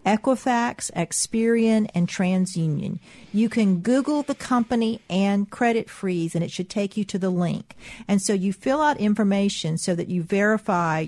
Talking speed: 160 wpm